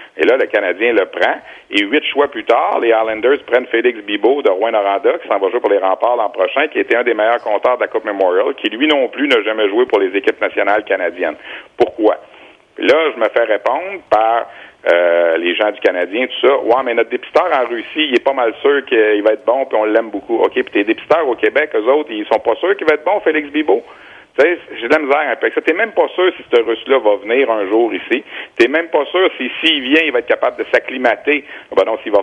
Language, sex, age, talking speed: French, male, 60-79, 255 wpm